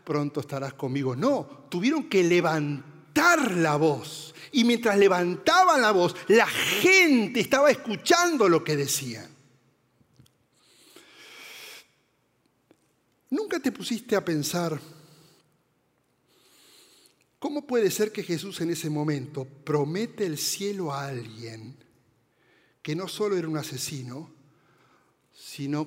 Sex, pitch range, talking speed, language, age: male, 135-200 Hz, 105 wpm, Spanish, 60-79